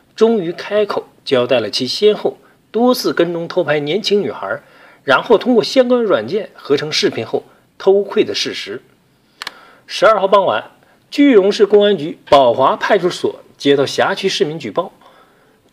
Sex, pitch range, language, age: male, 175-245 Hz, Chinese, 50-69